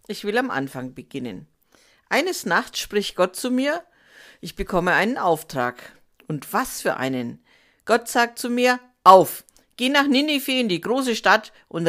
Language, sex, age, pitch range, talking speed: German, female, 50-69, 140-215 Hz, 160 wpm